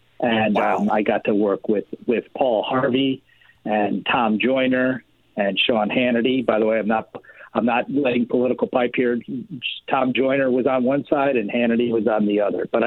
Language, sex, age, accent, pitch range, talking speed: English, male, 50-69, American, 110-130 Hz, 185 wpm